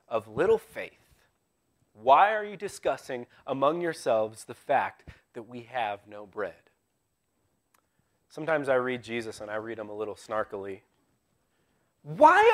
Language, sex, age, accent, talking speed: English, male, 30-49, American, 135 wpm